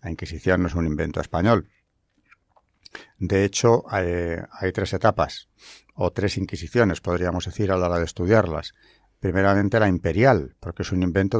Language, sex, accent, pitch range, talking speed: Spanish, male, Spanish, 85-105 Hz, 160 wpm